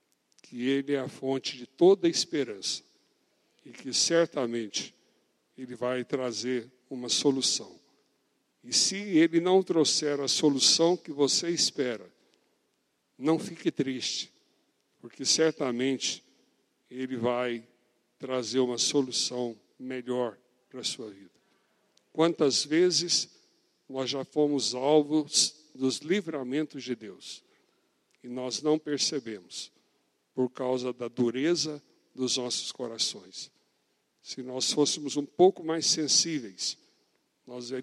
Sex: male